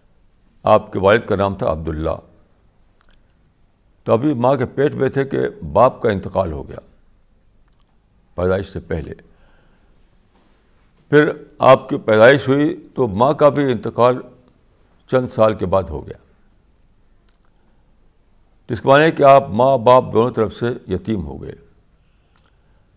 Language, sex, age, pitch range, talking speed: Urdu, male, 60-79, 90-120 Hz, 140 wpm